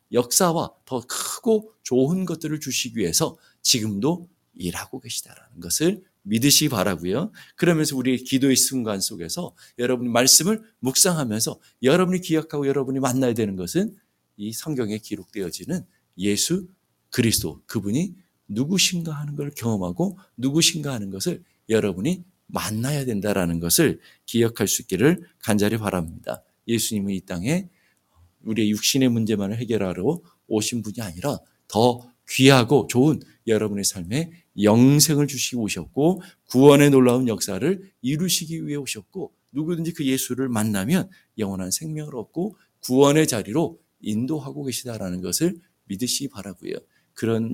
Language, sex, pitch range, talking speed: English, male, 105-155 Hz, 110 wpm